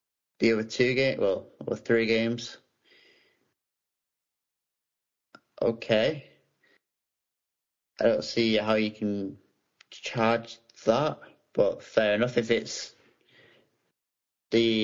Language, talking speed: English, 95 wpm